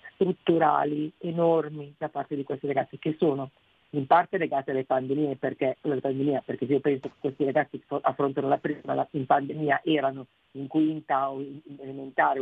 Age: 40-59